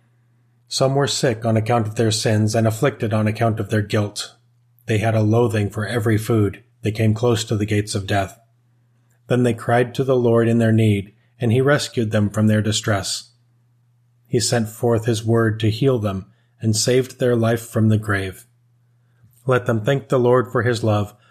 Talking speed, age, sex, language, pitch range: 195 wpm, 30-49, male, English, 110-120 Hz